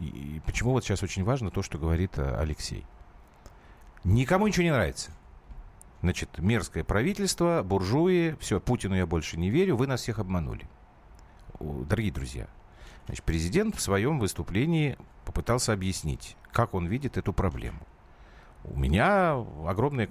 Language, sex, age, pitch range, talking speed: Russian, male, 40-59, 85-130 Hz, 135 wpm